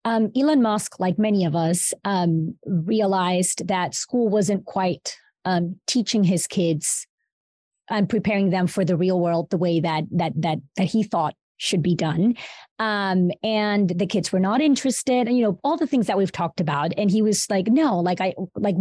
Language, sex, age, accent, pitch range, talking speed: English, female, 20-39, American, 180-220 Hz, 190 wpm